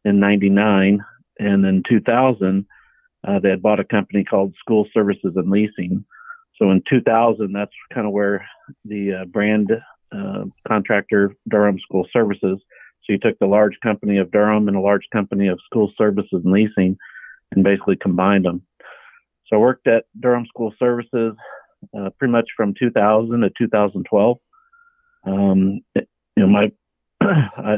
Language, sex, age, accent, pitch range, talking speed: English, male, 50-69, American, 100-110 Hz, 145 wpm